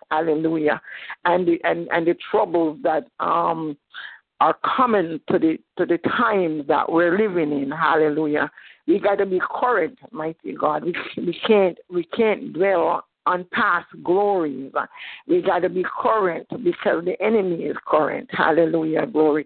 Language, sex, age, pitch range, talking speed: English, female, 50-69, 160-200 Hz, 145 wpm